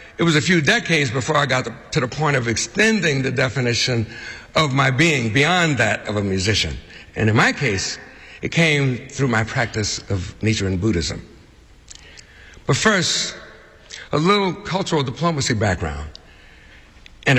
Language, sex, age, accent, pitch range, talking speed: English, male, 60-79, American, 95-145 Hz, 150 wpm